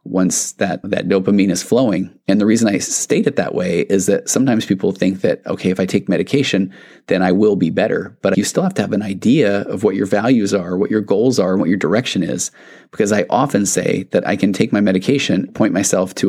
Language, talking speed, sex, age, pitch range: English, 235 wpm, male, 30-49, 95-120 Hz